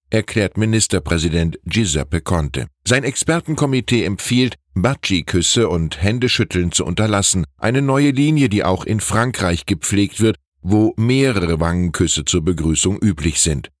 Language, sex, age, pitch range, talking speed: German, male, 10-29, 85-115 Hz, 125 wpm